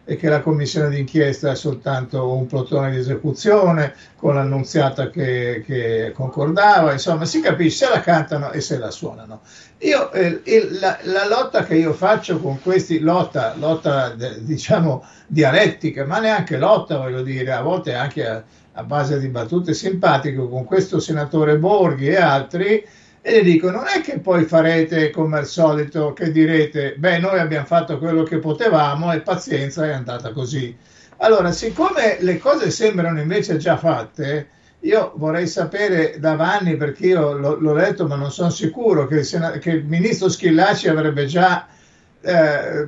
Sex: male